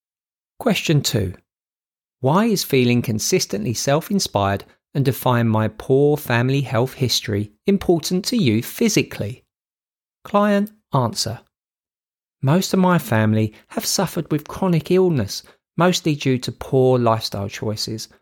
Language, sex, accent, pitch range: English, male, British, 115-155 Hz